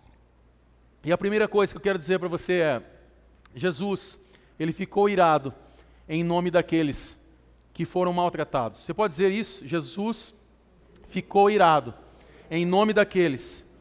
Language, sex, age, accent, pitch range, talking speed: Portuguese, male, 40-59, Brazilian, 165-225 Hz, 135 wpm